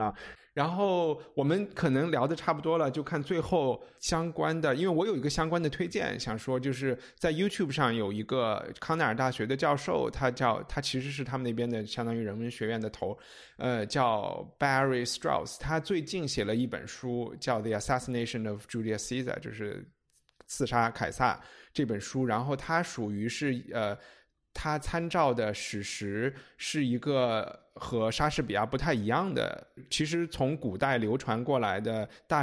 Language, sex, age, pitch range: Chinese, male, 20-39, 120-150 Hz